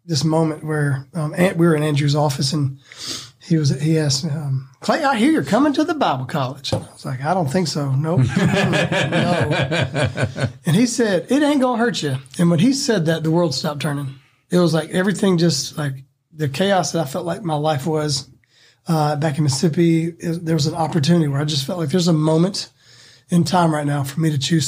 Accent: American